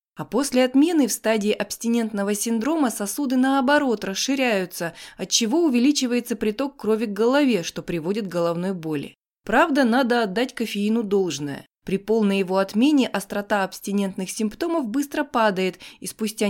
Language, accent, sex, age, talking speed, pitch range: Russian, native, female, 20-39, 135 wpm, 195-255 Hz